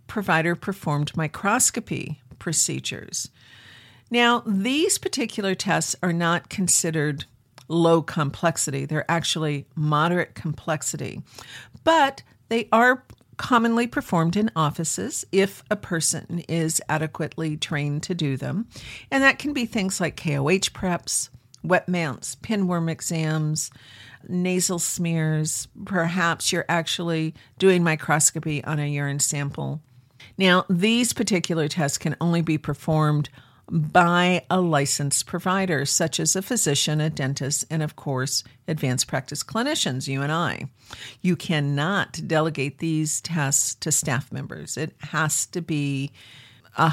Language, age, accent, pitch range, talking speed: English, 50-69, American, 145-180 Hz, 120 wpm